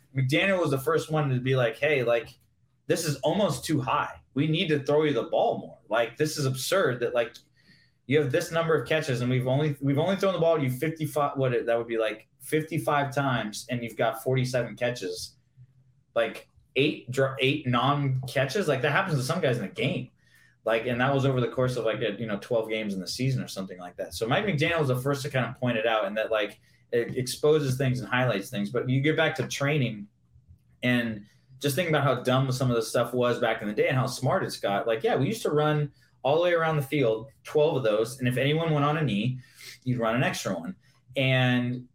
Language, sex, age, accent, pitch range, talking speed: English, male, 20-39, American, 120-150 Hz, 240 wpm